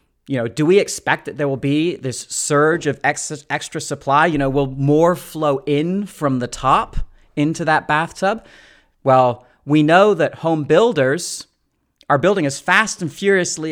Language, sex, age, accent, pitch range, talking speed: English, male, 30-49, American, 135-180 Hz, 165 wpm